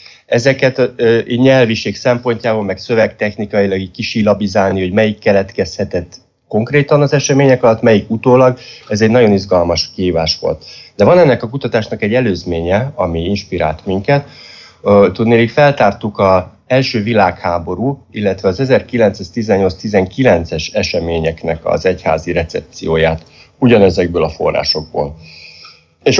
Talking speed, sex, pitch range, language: 110 wpm, male, 95-125 Hz, Hungarian